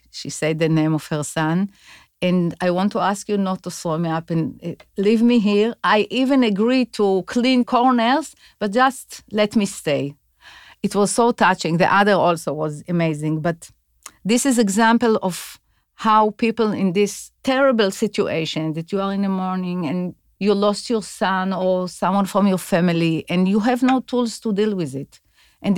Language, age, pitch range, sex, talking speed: English, 50-69, 180-225 Hz, female, 185 wpm